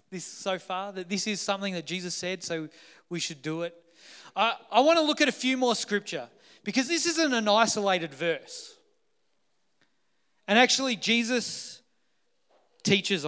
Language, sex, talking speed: English, male, 160 wpm